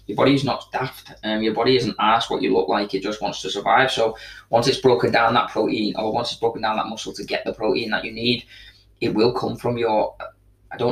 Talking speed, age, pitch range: 260 wpm, 20-39, 100-115 Hz